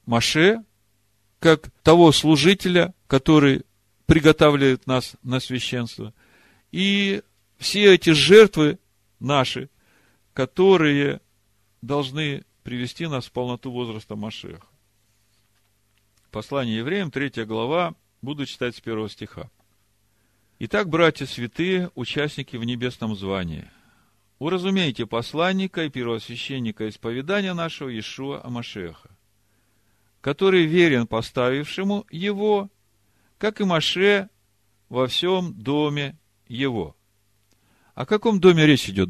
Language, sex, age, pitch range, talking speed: Russian, male, 50-69, 105-160 Hz, 100 wpm